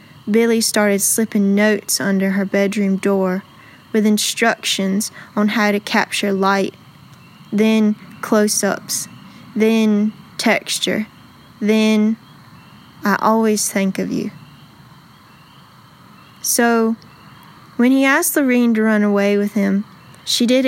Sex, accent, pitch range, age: female, American, 200-225 Hz, 20-39